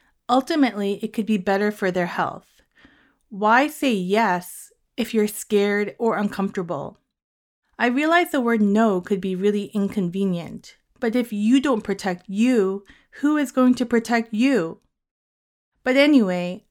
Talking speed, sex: 140 wpm, female